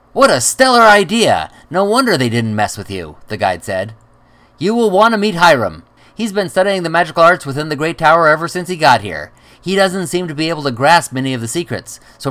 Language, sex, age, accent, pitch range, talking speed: English, male, 30-49, American, 110-155 Hz, 235 wpm